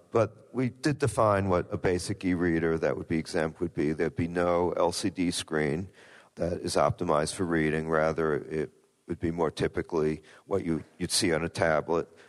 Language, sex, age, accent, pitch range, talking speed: English, male, 50-69, American, 80-95 Hz, 175 wpm